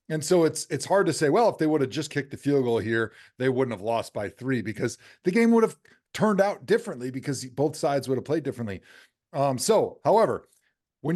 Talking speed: 230 wpm